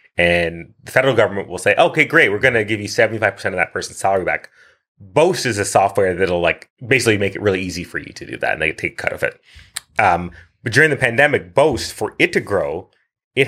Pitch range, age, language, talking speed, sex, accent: 90-115 Hz, 30-49, English, 235 wpm, male, American